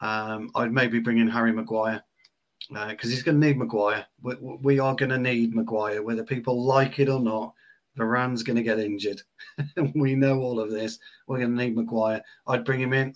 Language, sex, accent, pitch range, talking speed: English, male, British, 115-130 Hz, 210 wpm